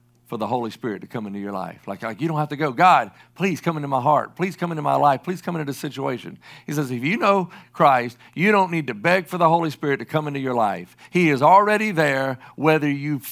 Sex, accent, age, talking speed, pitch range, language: male, American, 50-69, 260 wpm, 120-175 Hz, English